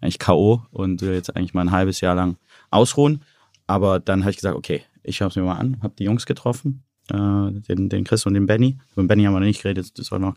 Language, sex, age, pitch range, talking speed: German, male, 30-49, 95-115 Hz, 260 wpm